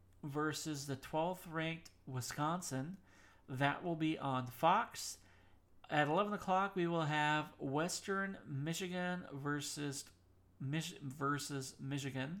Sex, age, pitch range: male, 40-59, 130-155 Hz